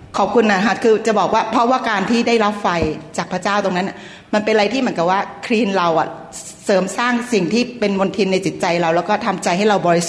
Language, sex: Thai, female